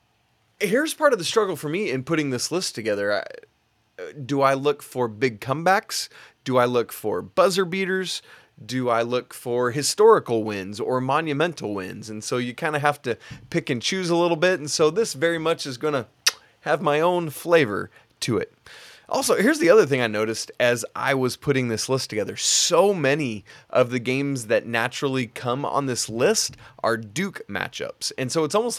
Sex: male